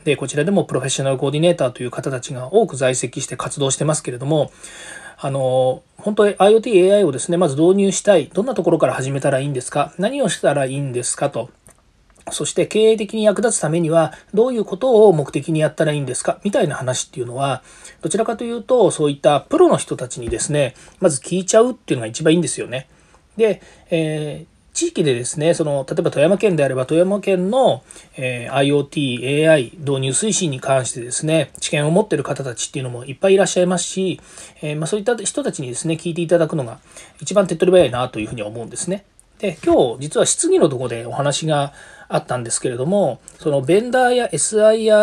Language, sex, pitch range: Japanese, male, 135-195 Hz